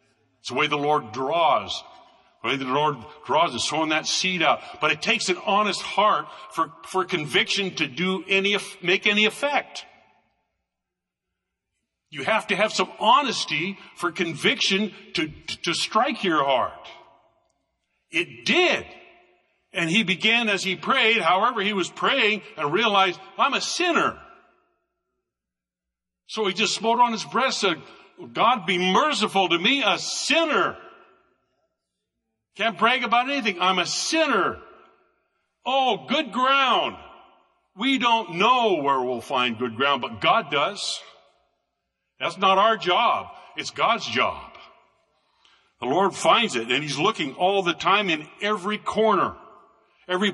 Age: 60-79